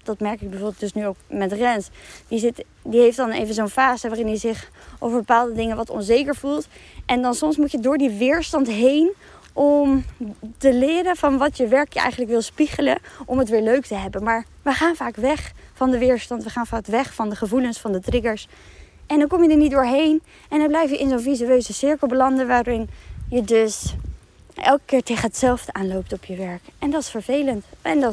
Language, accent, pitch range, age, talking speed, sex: Dutch, Dutch, 230-285 Hz, 20-39, 220 wpm, female